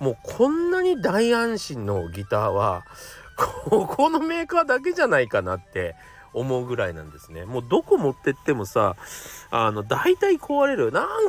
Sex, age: male, 40-59